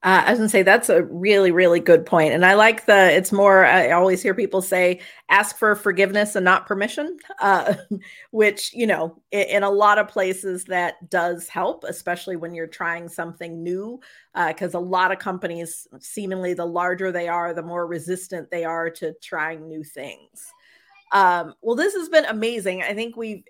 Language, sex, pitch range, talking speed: English, female, 185-245 Hz, 200 wpm